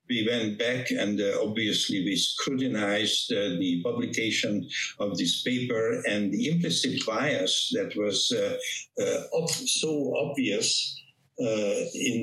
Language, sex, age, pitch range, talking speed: English, male, 60-79, 110-155 Hz, 130 wpm